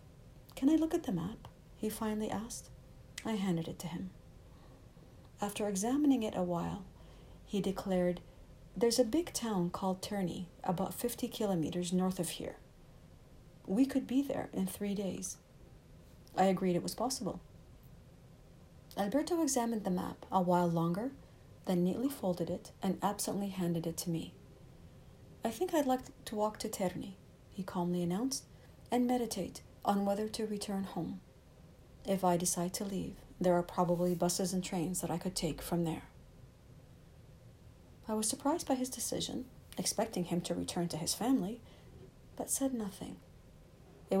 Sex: female